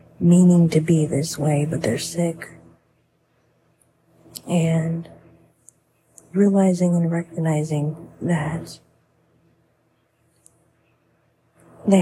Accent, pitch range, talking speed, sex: American, 155-170 Hz, 70 wpm, female